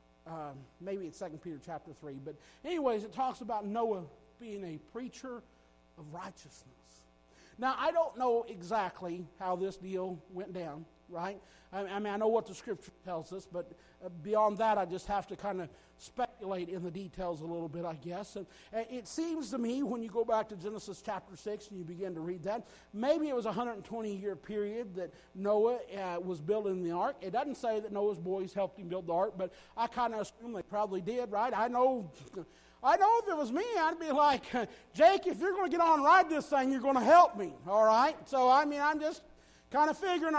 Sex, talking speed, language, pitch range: male, 215 wpm, English, 195-320 Hz